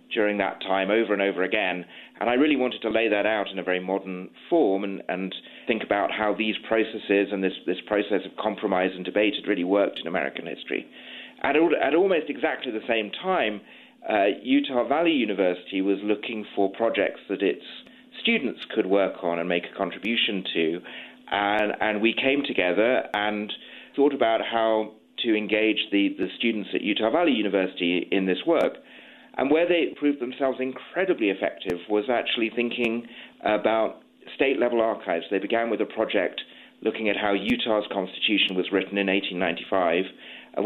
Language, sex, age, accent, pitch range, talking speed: English, male, 40-59, British, 95-120 Hz, 170 wpm